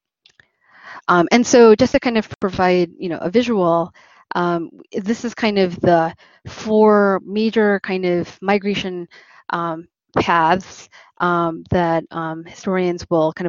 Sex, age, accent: female, 20-39, American